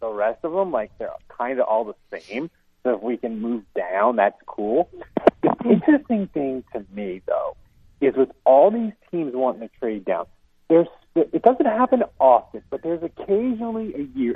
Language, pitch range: English, 120-190 Hz